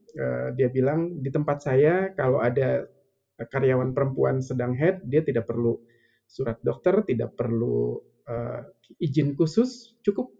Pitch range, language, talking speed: 125-150 Hz, Indonesian, 125 wpm